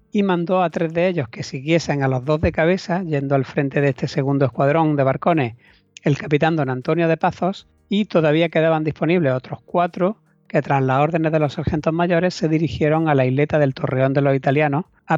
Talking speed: 210 wpm